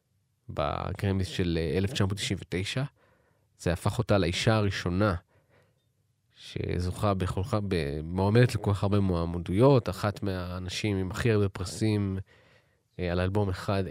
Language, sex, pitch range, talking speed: Hebrew, male, 95-120 Hz, 105 wpm